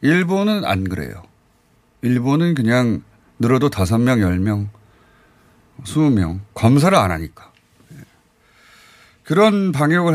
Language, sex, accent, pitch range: Korean, male, native, 100-145 Hz